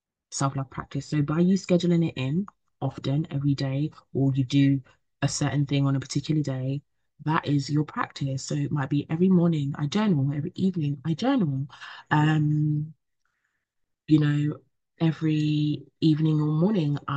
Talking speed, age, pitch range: 155 wpm, 20-39, 140-160 Hz